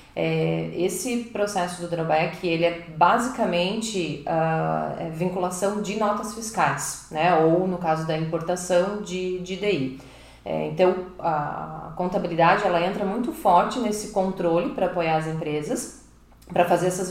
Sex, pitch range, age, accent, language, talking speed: female, 160-200 Hz, 30-49, Brazilian, Portuguese, 125 wpm